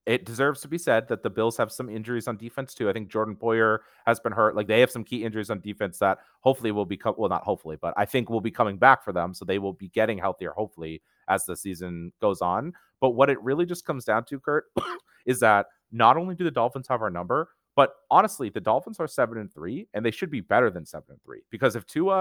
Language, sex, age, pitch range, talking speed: English, male, 30-49, 105-130 Hz, 265 wpm